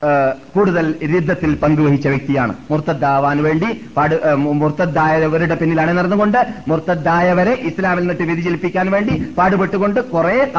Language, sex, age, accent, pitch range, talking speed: Malayalam, male, 30-49, native, 160-195 Hz, 100 wpm